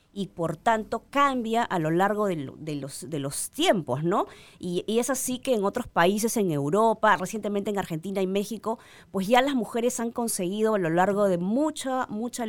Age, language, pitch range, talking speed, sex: 20-39, Spanish, 175-230 Hz, 185 wpm, female